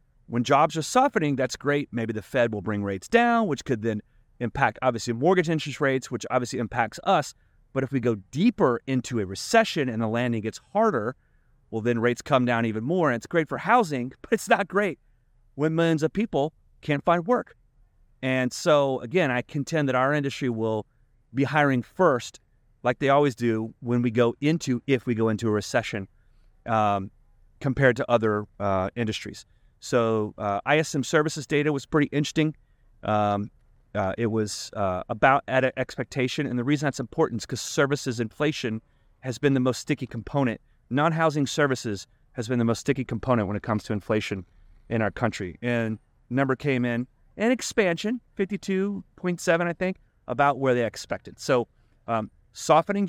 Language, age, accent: English, 30-49, American